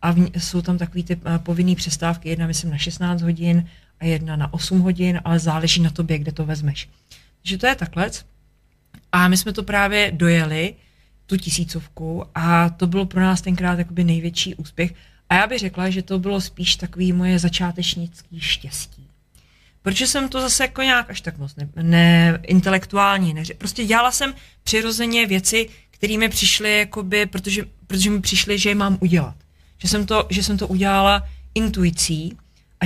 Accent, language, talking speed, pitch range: native, Czech, 170 wpm, 170-205 Hz